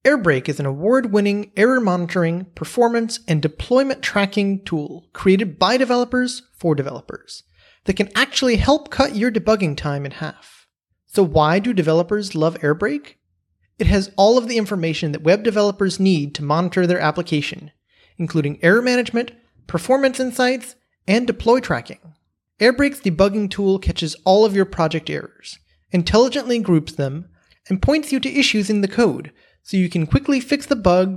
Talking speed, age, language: 155 wpm, 30-49, English